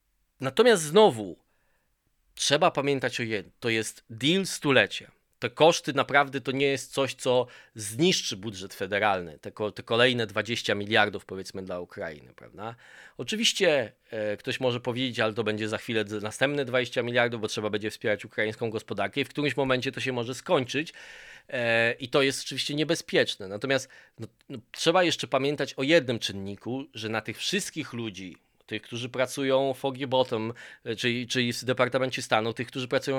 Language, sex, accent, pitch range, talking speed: Polish, male, native, 115-150 Hz, 165 wpm